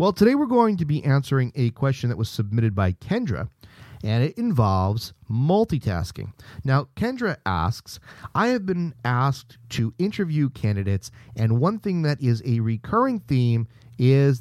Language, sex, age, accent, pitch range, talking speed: English, male, 40-59, American, 115-150 Hz, 155 wpm